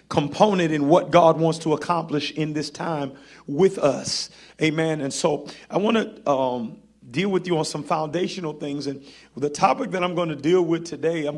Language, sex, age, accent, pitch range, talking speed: English, male, 40-59, American, 150-180 Hz, 195 wpm